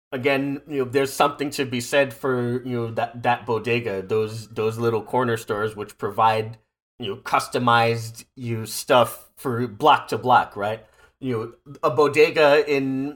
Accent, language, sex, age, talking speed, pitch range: American, English, male, 30-49, 170 wpm, 110-135 Hz